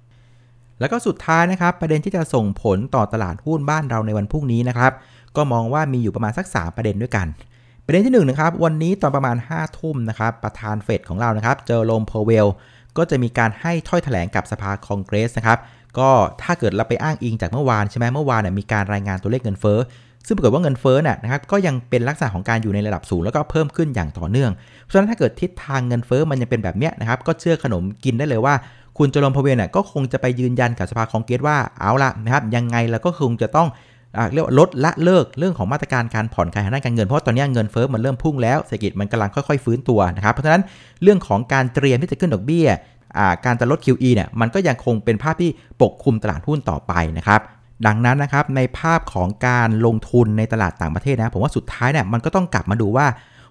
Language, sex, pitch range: Thai, male, 110-145 Hz